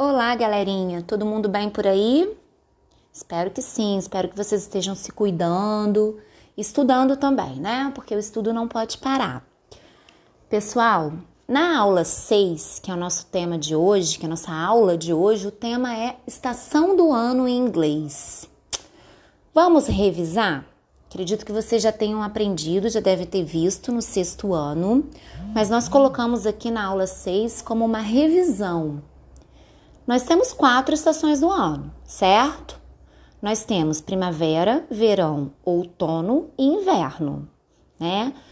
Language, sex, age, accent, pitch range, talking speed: Portuguese, female, 20-39, Brazilian, 175-250 Hz, 140 wpm